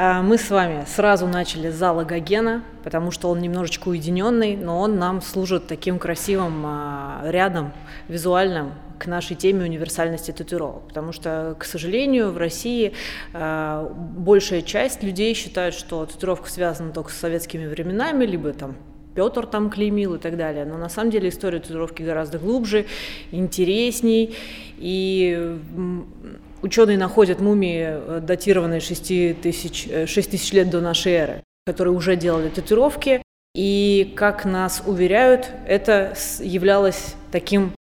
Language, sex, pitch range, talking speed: Russian, female, 165-195 Hz, 130 wpm